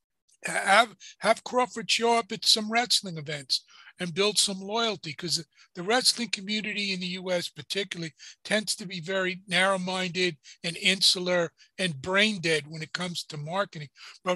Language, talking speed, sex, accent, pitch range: English, 160 wpm, male, American, 175-210 Hz